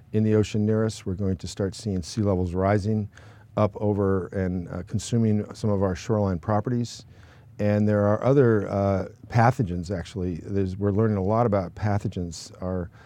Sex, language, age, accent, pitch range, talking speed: male, English, 50-69, American, 95-115 Hz, 170 wpm